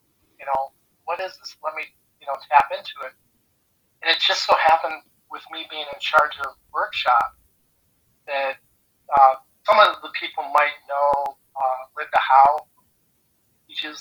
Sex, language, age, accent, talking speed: male, English, 40-59, American, 150 wpm